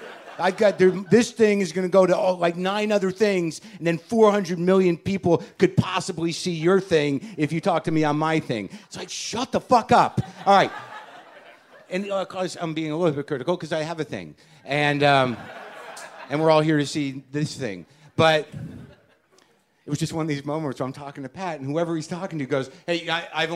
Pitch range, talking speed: 130-185 Hz, 220 wpm